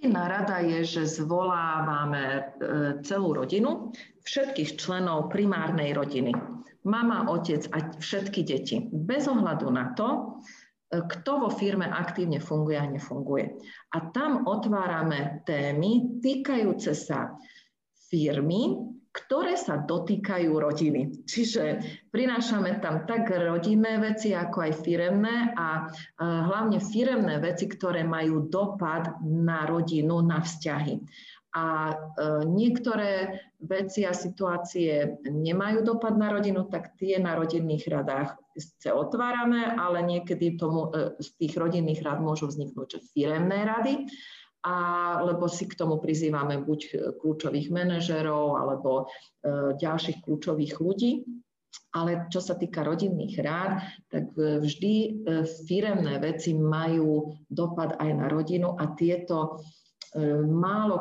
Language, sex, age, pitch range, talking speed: Slovak, female, 40-59, 155-200 Hz, 115 wpm